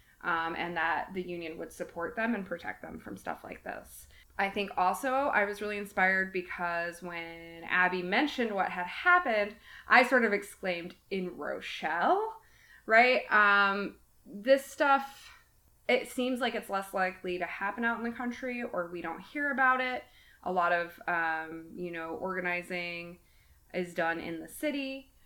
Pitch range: 170-220 Hz